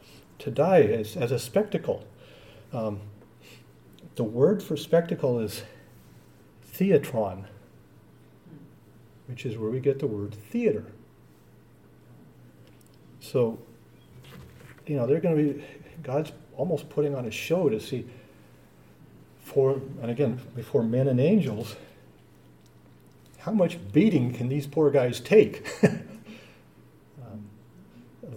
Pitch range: 110-145 Hz